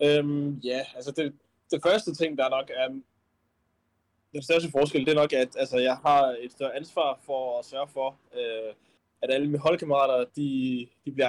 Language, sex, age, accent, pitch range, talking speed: Danish, male, 20-39, native, 115-150 Hz, 200 wpm